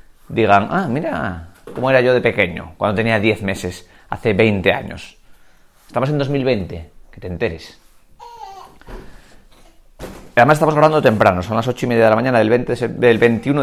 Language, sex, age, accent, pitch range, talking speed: Spanish, male, 30-49, Spanish, 110-155 Hz, 165 wpm